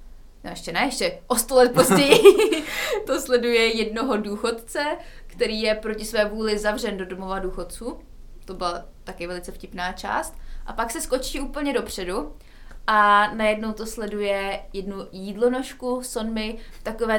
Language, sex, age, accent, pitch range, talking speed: Czech, female, 20-39, native, 200-240 Hz, 145 wpm